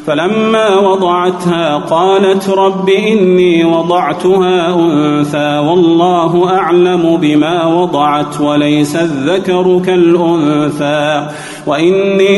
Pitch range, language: 150-180 Hz, Arabic